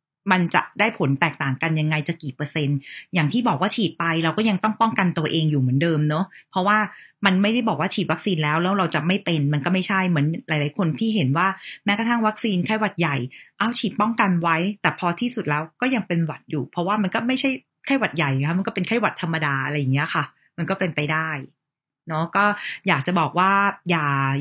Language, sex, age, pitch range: Thai, female, 30-49, 155-195 Hz